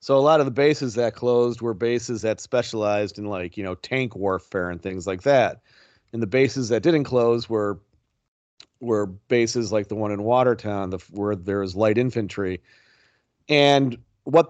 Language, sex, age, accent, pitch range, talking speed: English, male, 40-59, American, 105-135 Hz, 180 wpm